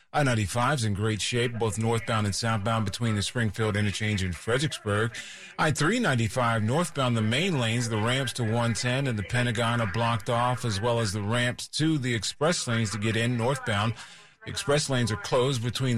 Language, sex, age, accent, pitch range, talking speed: English, male, 40-59, American, 110-130 Hz, 180 wpm